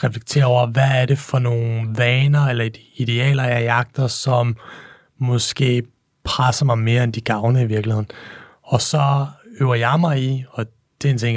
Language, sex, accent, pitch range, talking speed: Danish, male, native, 120-135 Hz, 175 wpm